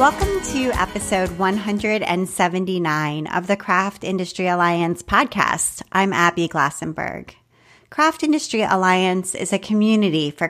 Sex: female